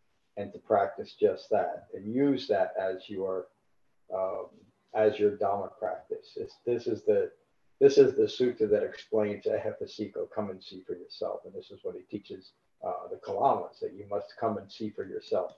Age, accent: 50-69, American